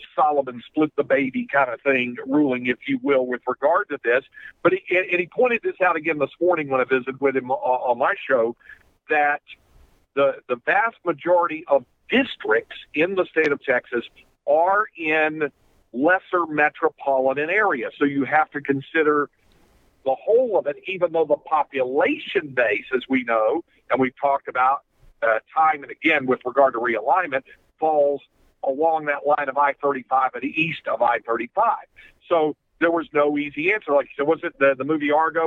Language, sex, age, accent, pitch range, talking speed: English, male, 50-69, American, 140-165 Hz, 175 wpm